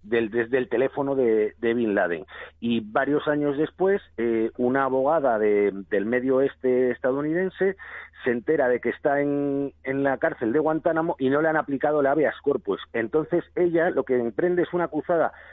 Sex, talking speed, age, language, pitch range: male, 180 wpm, 40-59, Spanish, 120-150 Hz